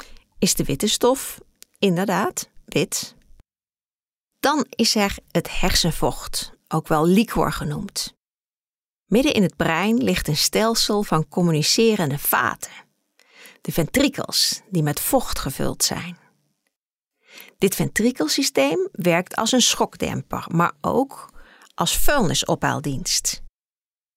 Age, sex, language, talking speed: 40-59, female, Dutch, 105 wpm